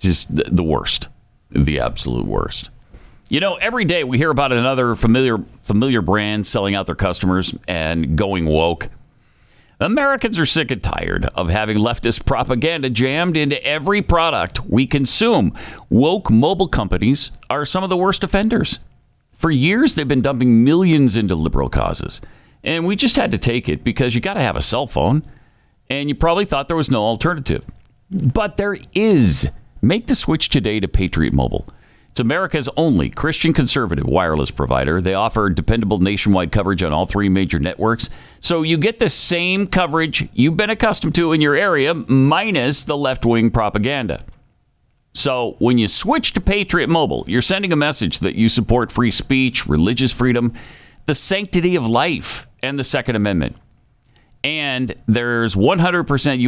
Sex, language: male, English